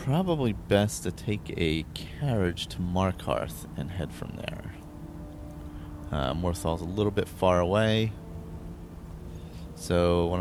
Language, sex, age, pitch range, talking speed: English, male, 30-49, 75-95 Hz, 120 wpm